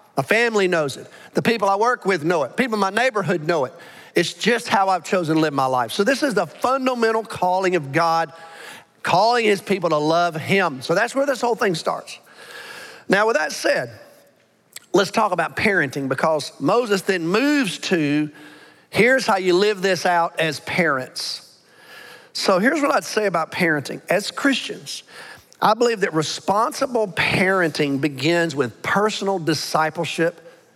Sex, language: male, English